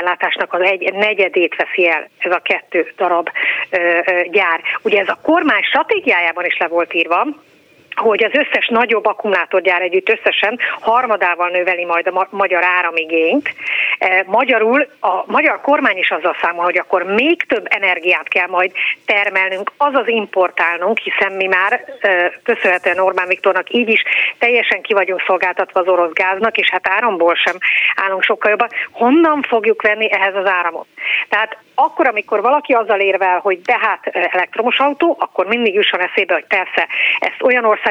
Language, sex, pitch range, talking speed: Hungarian, female, 180-220 Hz, 150 wpm